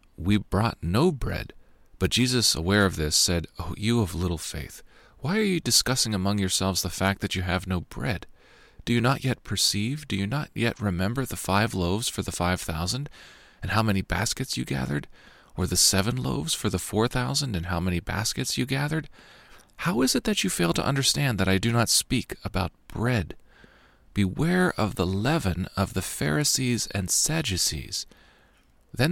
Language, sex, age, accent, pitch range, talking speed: English, male, 40-59, American, 90-120 Hz, 185 wpm